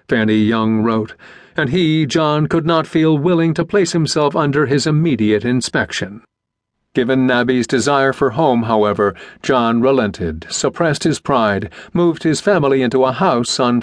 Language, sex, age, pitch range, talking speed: English, male, 50-69, 115-150 Hz, 150 wpm